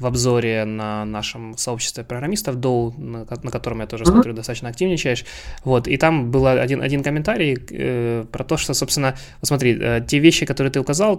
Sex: male